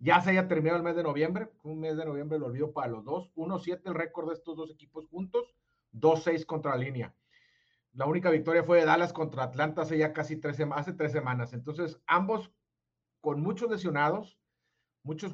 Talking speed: 195 wpm